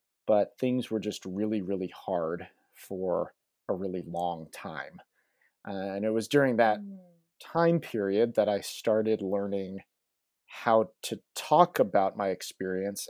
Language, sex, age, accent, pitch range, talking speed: English, male, 30-49, American, 100-115 Hz, 135 wpm